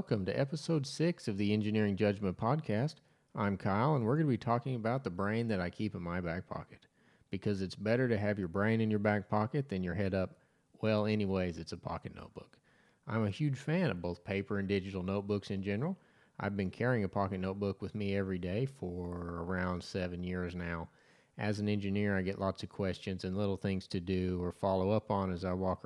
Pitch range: 95-110 Hz